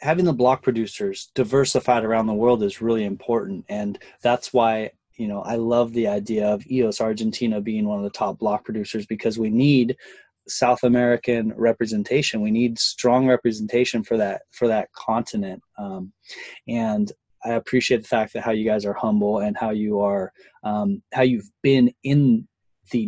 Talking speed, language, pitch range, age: 175 wpm, English, 110-135 Hz, 20-39